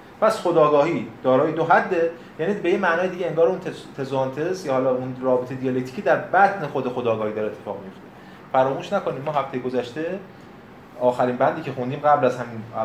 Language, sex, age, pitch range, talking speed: Persian, male, 30-49, 120-165 Hz, 175 wpm